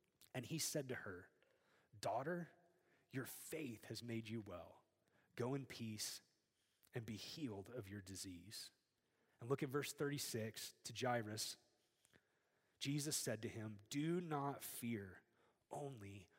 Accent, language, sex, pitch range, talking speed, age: American, English, male, 130-190 Hz, 130 wpm, 30-49